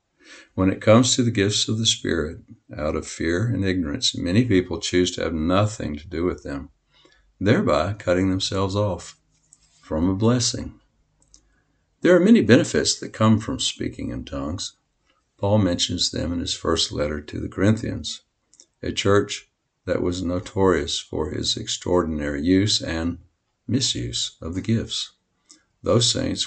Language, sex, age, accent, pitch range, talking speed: English, male, 60-79, American, 90-115 Hz, 150 wpm